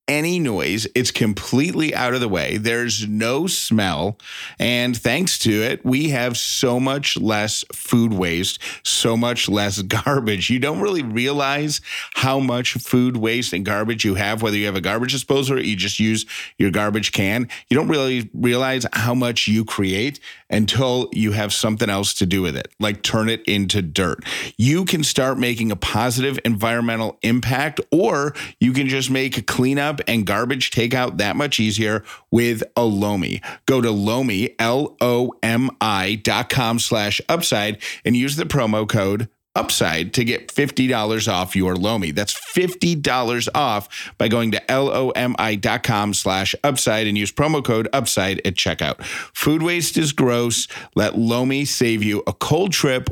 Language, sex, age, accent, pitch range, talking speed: English, male, 40-59, American, 105-130 Hz, 165 wpm